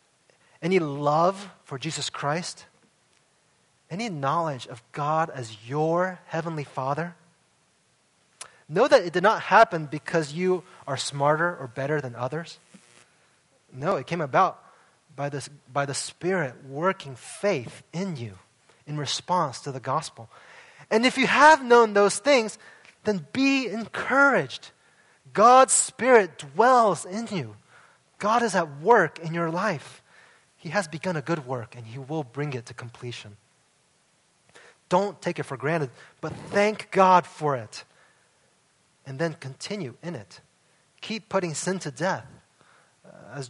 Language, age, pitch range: English, 20-39, 140-195 Hz